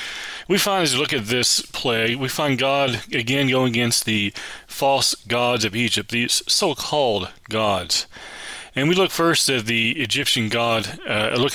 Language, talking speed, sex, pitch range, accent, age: English, 165 wpm, male, 110-135 Hz, American, 30-49